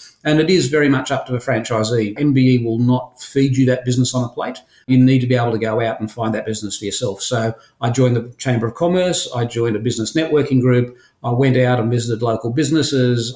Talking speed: 240 wpm